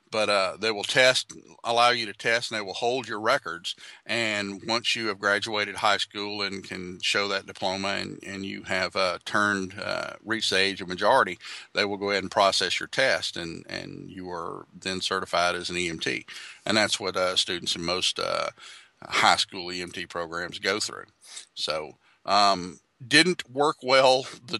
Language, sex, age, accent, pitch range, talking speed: English, male, 50-69, American, 95-110 Hz, 185 wpm